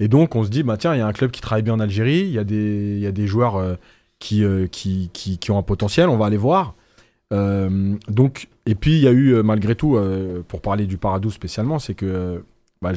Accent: French